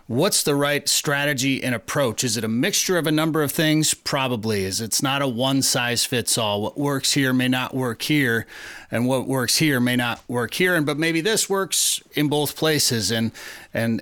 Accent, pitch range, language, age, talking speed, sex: American, 120-145 Hz, English, 30-49, 210 wpm, male